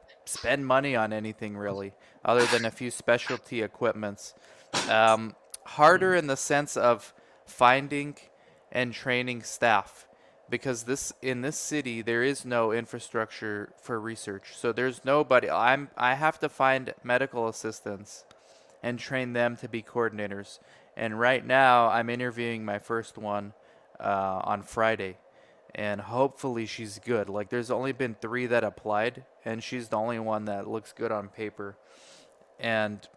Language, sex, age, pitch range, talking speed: English, male, 20-39, 110-130 Hz, 145 wpm